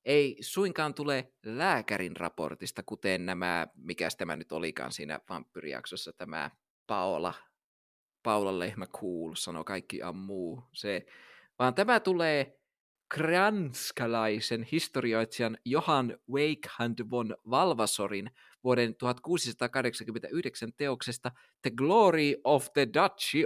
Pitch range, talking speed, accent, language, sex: 115-155 Hz, 100 wpm, native, Finnish, male